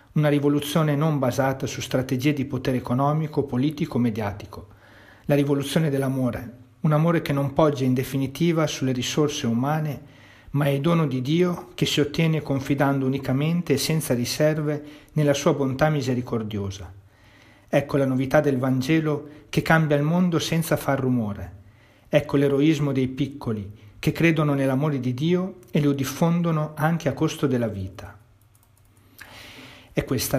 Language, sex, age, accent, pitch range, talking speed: Italian, male, 40-59, native, 125-150 Hz, 145 wpm